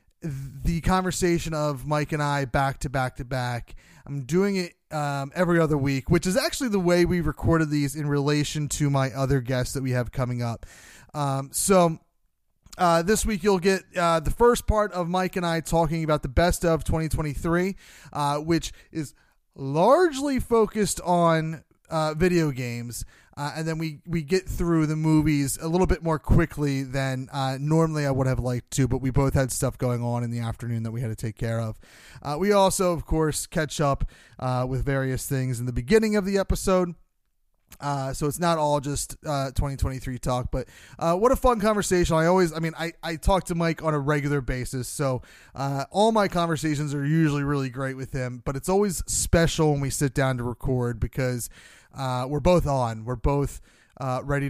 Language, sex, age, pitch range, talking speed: English, male, 30-49, 130-170 Hz, 200 wpm